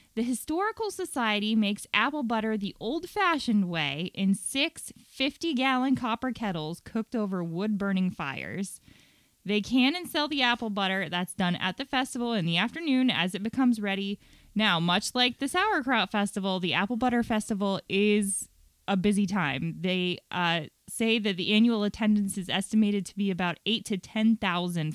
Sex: female